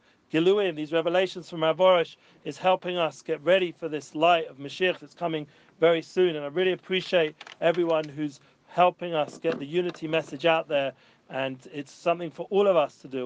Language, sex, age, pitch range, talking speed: English, male, 40-59, 155-175 Hz, 190 wpm